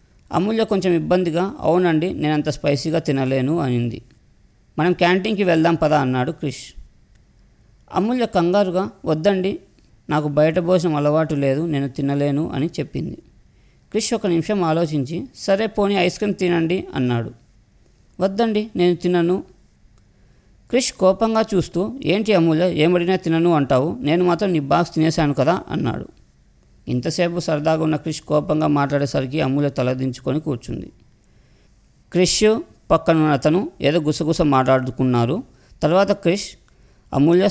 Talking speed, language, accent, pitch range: 115 wpm, Telugu, native, 135-180 Hz